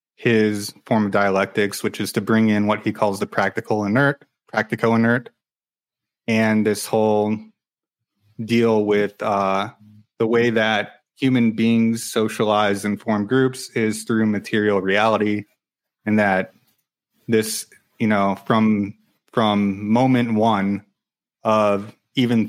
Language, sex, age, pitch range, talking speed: English, male, 20-39, 105-115 Hz, 125 wpm